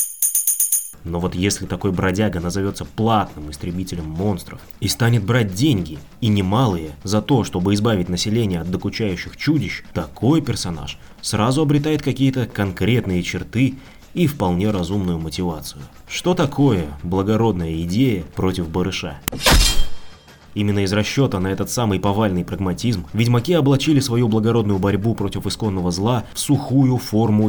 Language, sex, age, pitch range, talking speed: Russian, male, 20-39, 90-115 Hz, 130 wpm